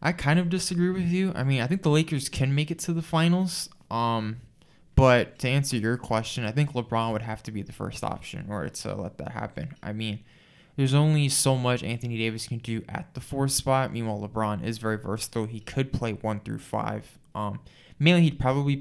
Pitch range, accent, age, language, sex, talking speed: 110-140 Hz, American, 20-39, English, male, 220 wpm